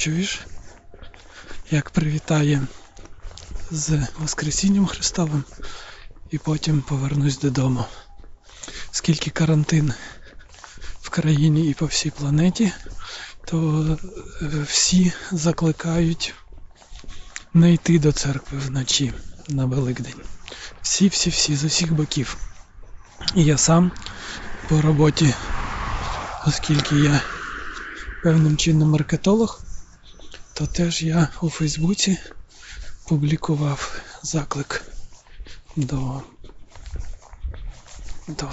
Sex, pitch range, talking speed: male, 135-165 Hz, 80 wpm